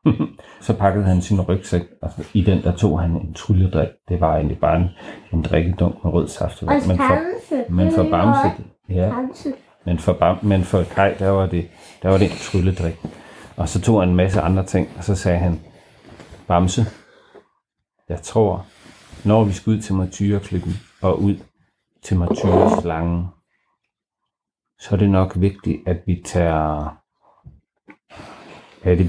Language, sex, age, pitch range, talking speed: Danish, male, 40-59, 85-105 Hz, 160 wpm